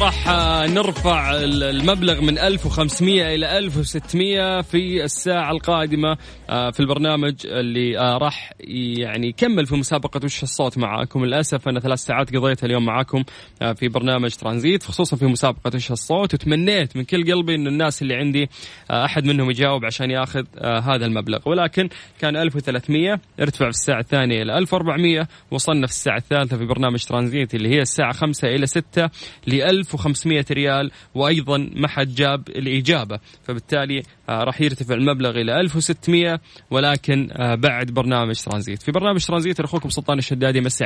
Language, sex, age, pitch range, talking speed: Arabic, male, 20-39, 130-160 Hz, 145 wpm